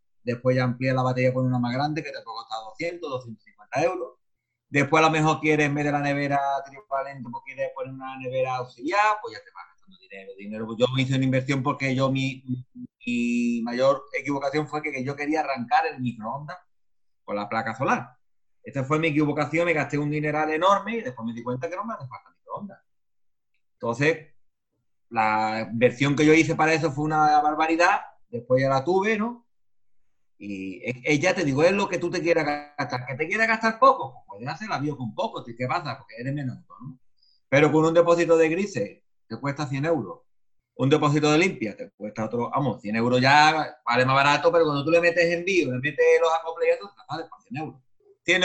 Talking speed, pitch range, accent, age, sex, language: 210 wpm, 130-170 Hz, Spanish, 30-49, male, Spanish